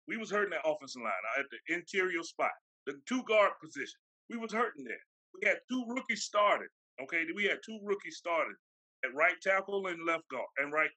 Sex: male